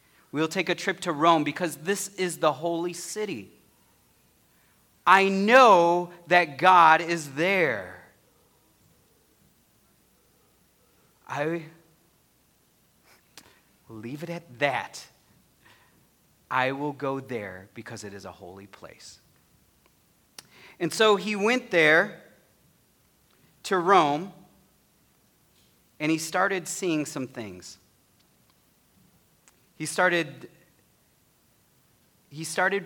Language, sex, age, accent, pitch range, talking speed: English, male, 40-59, American, 130-175 Hz, 95 wpm